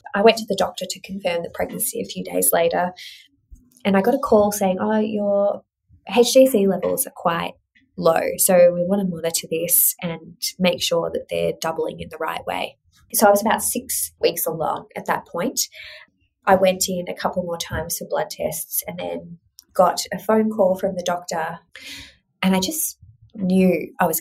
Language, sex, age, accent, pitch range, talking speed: English, female, 20-39, Australian, 165-220 Hz, 190 wpm